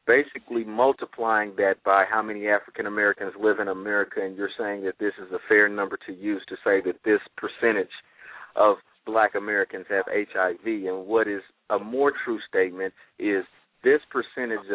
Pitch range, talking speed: 105-130 Hz, 165 wpm